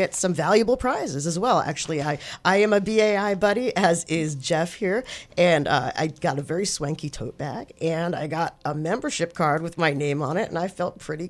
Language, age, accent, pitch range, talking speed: English, 40-59, American, 165-225 Hz, 220 wpm